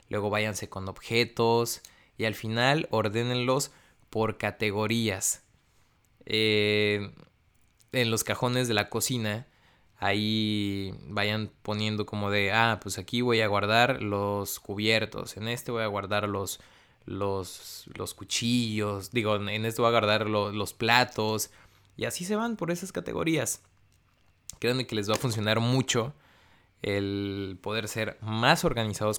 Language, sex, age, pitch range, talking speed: Spanish, male, 20-39, 105-125 Hz, 140 wpm